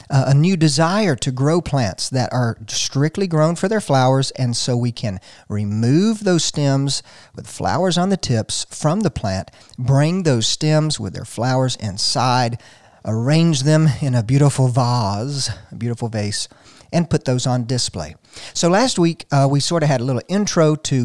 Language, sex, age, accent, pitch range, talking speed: English, male, 50-69, American, 120-160 Hz, 175 wpm